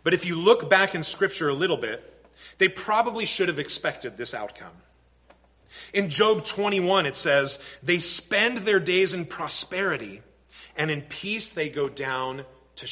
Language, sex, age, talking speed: English, male, 30-49, 165 wpm